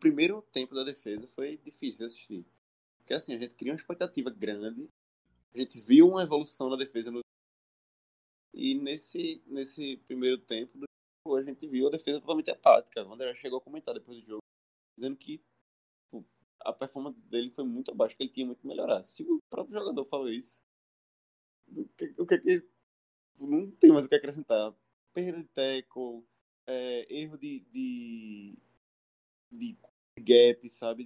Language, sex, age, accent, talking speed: Portuguese, male, 20-39, Brazilian, 170 wpm